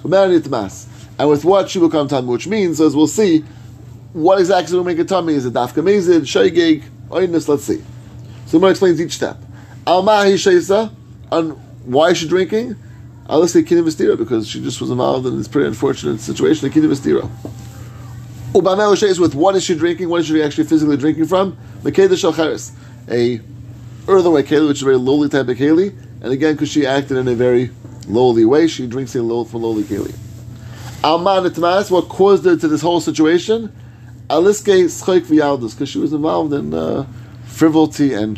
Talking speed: 150 wpm